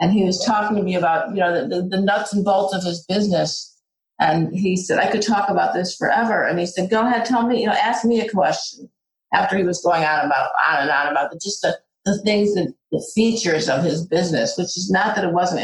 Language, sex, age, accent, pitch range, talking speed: English, female, 50-69, American, 175-210 Hz, 250 wpm